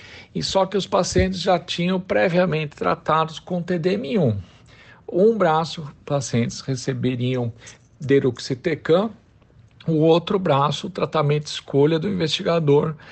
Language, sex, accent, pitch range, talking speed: Portuguese, male, Brazilian, 125-160 Hz, 115 wpm